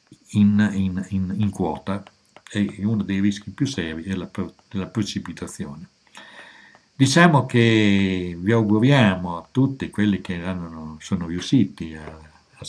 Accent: native